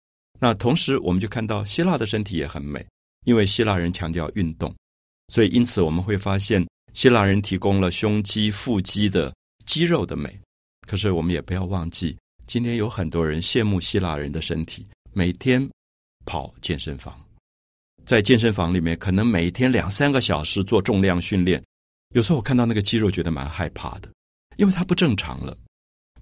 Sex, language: male, Chinese